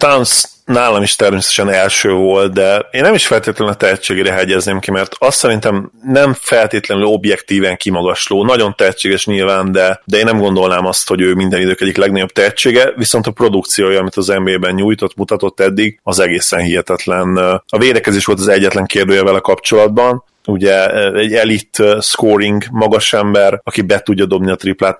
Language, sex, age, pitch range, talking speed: Hungarian, male, 30-49, 95-105 Hz, 170 wpm